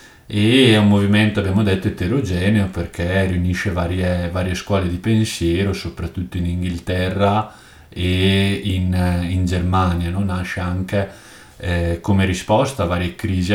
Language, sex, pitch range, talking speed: Italian, male, 85-100 Hz, 135 wpm